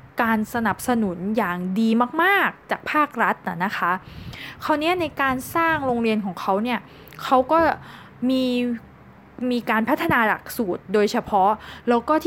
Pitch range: 220-290 Hz